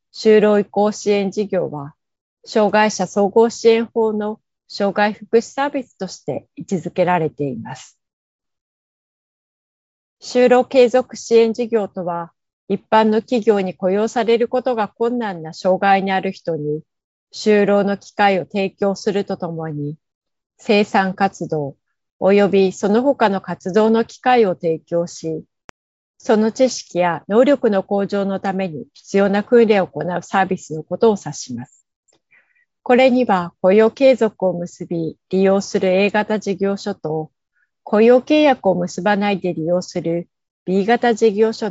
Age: 40-59